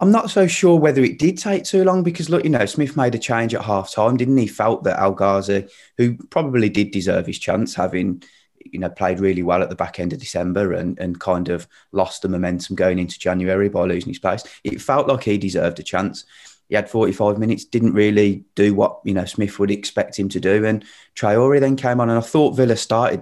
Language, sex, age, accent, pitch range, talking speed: English, male, 30-49, British, 90-115 Hz, 235 wpm